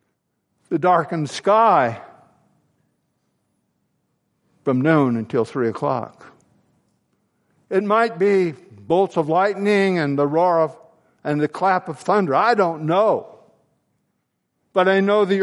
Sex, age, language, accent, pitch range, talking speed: male, 60-79, English, American, 170-220 Hz, 115 wpm